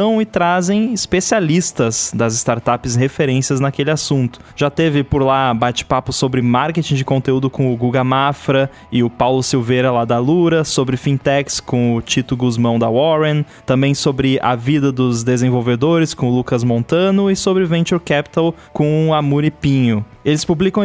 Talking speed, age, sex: 160 wpm, 20-39, male